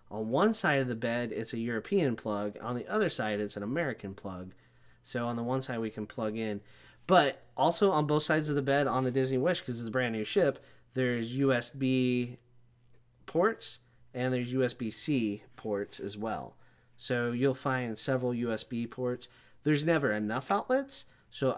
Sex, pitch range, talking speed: male, 110-135 Hz, 180 wpm